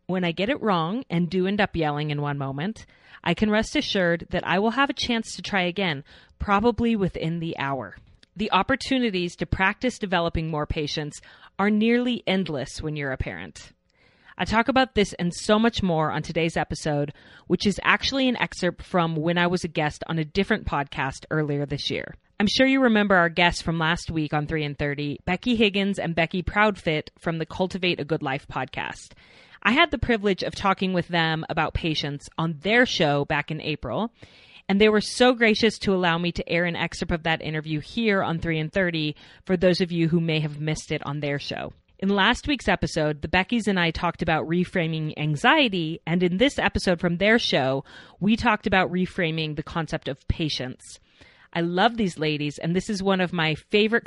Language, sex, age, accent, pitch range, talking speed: English, female, 30-49, American, 155-200 Hz, 205 wpm